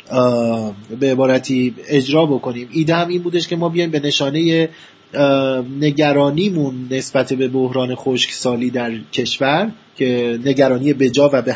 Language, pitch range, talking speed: Persian, 130-180 Hz, 135 wpm